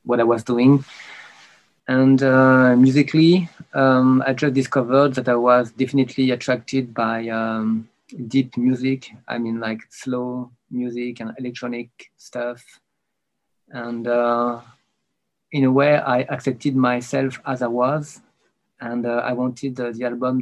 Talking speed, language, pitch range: 135 wpm, English, 120-135 Hz